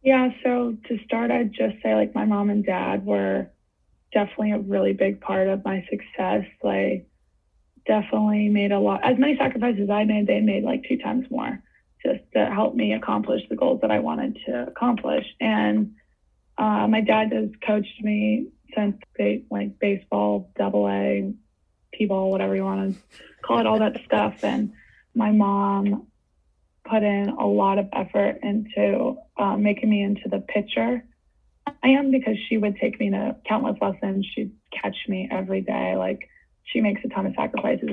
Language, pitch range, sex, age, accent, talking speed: English, 190-235 Hz, female, 20-39, American, 175 wpm